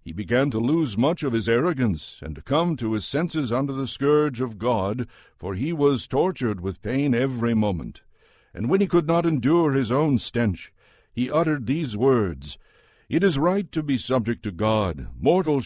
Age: 60-79